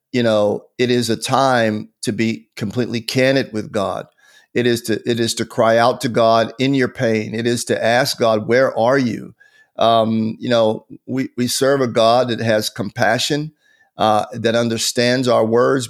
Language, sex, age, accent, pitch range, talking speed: English, male, 50-69, American, 115-135 Hz, 185 wpm